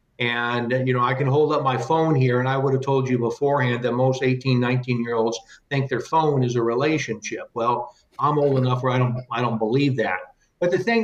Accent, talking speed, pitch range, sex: American, 235 wpm, 120-145 Hz, male